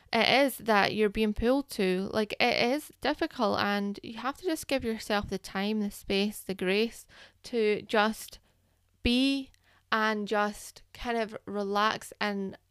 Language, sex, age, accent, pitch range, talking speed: English, female, 10-29, British, 200-235 Hz, 155 wpm